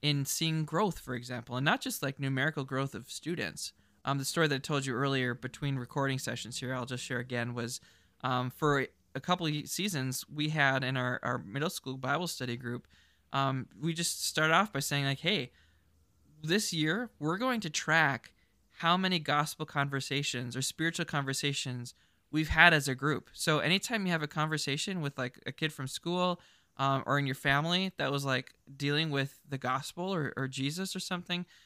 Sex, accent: male, American